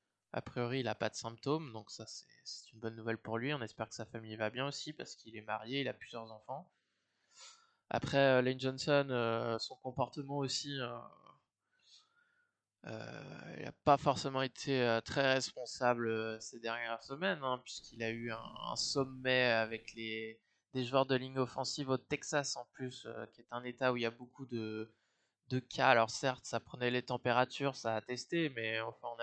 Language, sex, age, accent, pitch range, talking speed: French, male, 20-39, French, 115-135 Hz, 195 wpm